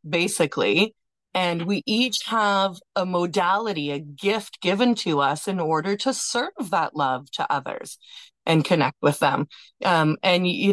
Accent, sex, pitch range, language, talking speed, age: American, female, 175-245 Hz, English, 150 wpm, 30-49